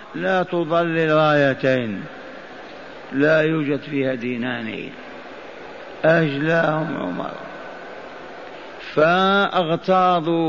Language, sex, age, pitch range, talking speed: Arabic, male, 50-69, 150-185 Hz, 55 wpm